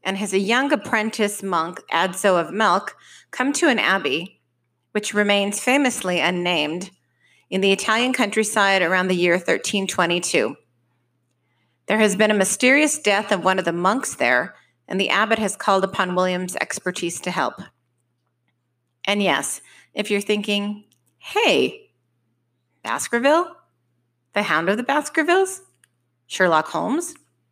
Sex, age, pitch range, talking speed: female, 30-49, 160-210 Hz, 135 wpm